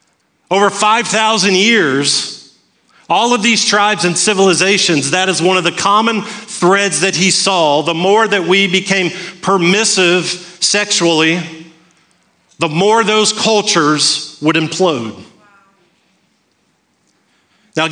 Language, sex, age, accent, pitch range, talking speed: English, male, 40-59, American, 165-200 Hz, 110 wpm